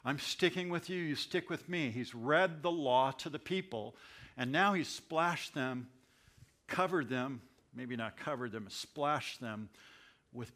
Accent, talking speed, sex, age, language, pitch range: American, 165 wpm, male, 60-79, English, 125-165 Hz